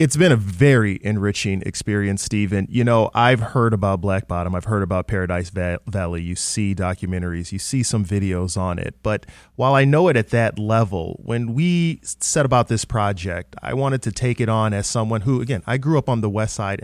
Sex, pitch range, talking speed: male, 100-130 Hz, 210 wpm